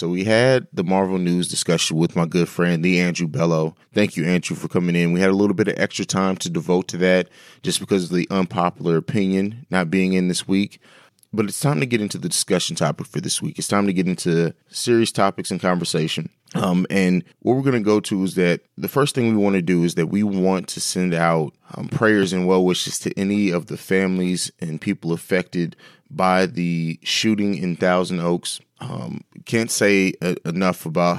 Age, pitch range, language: 30-49, 85-100 Hz, English